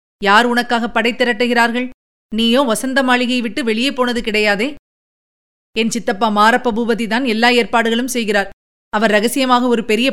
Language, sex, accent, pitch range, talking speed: Tamil, female, native, 205-255 Hz, 130 wpm